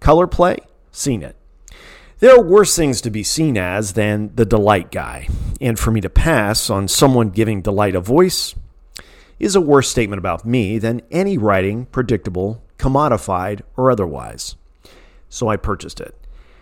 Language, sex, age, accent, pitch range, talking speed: English, male, 40-59, American, 100-140 Hz, 160 wpm